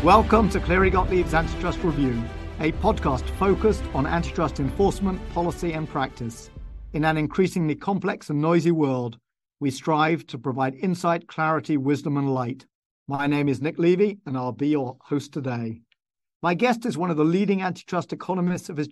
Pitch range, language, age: 145-170 Hz, English, 50-69